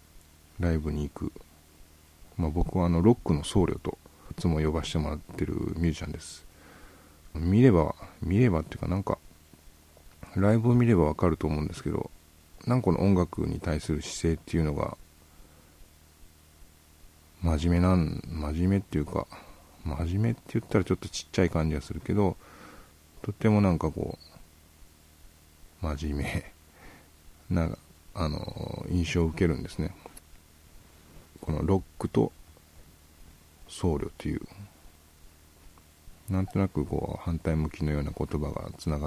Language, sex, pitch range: English, male, 75-90 Hz